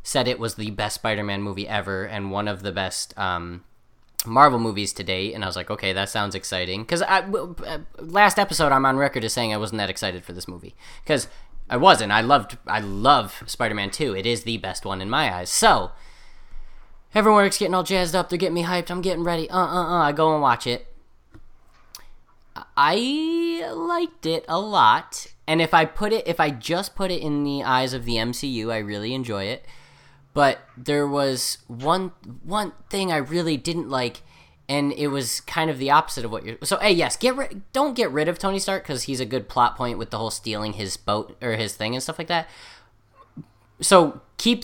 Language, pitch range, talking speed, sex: English, 110-170 Hz, 210 wpm, male